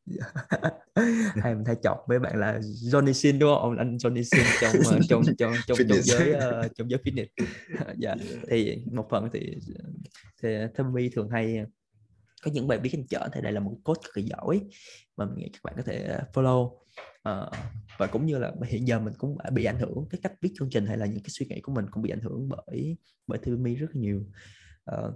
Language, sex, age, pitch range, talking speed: Vietnamese, male, 20-39, 115-145 Hz, 210 wpm